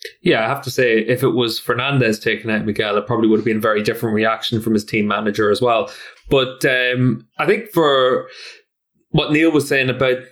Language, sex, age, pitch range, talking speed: English, male, 20-39, 110-130 Hz, 215 wpm